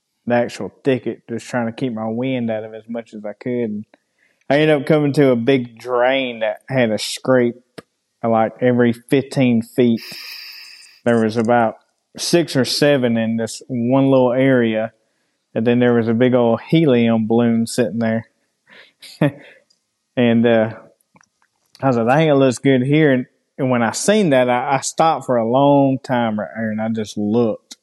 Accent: American